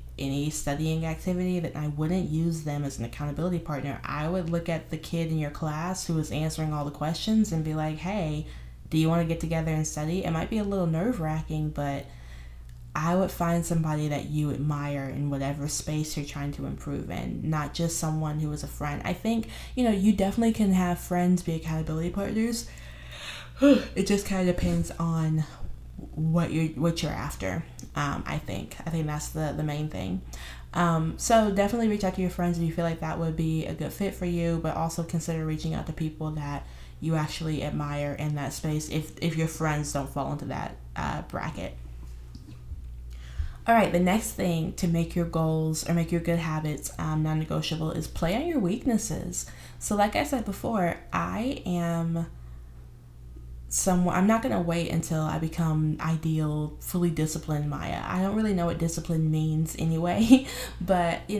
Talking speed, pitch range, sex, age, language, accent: 190 wpm, 150-175 Hz, female, 20-39, English, American